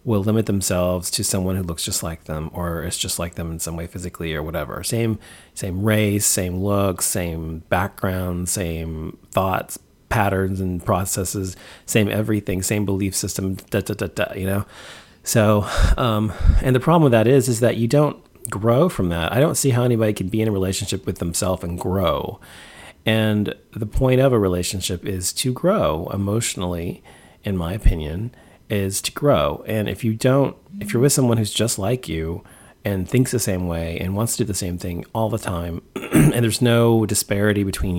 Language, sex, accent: English, male, American